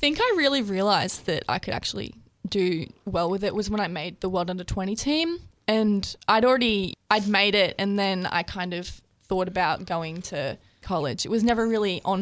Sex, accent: female, Australian